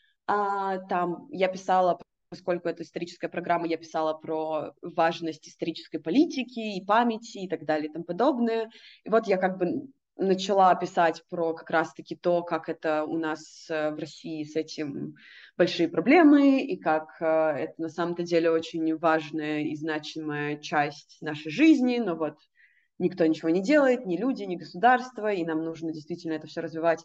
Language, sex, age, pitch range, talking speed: Russian, female, 20-39, 165-220 Hz, 160 wpm